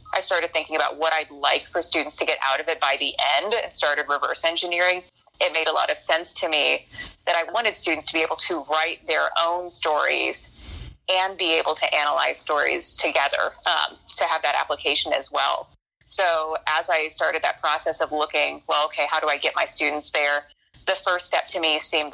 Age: 20-39